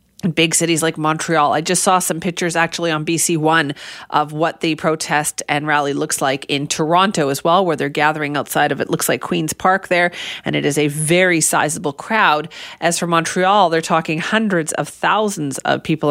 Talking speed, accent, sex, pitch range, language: 195 wpm, American, female, 155-185 Hz, English